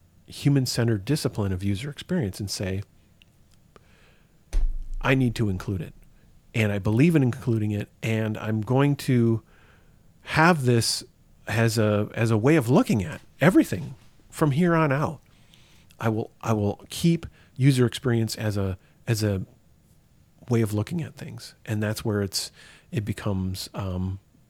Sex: male